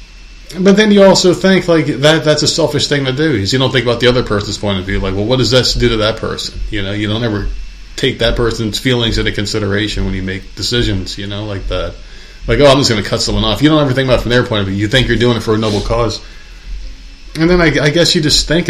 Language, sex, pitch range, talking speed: English, male, 105-140 Hz, 280 wpm